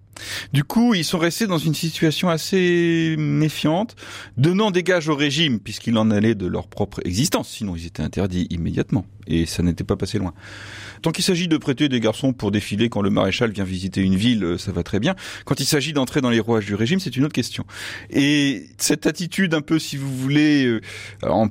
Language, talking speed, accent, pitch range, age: French, 210 wpm, French, 100-140 Hz, 30-49